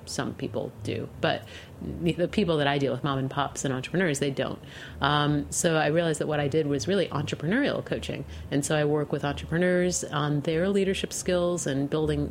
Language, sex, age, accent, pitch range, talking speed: English, female, 30-49, American, 135-155 Hz, 200 wpm